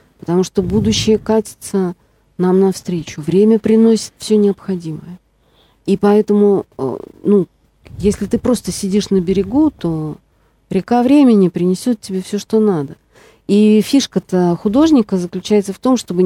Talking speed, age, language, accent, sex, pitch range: 125 wpm, 40-59, Russian, native, female, 180-215 Hz